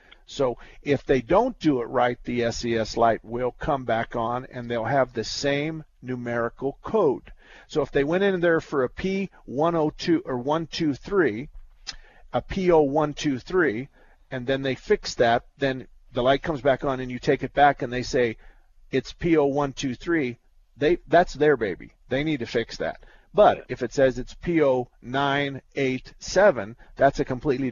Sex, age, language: male, 50-69, English